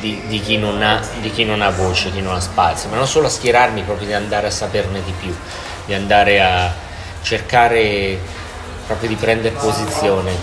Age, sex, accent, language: 30-49, male, native, Italian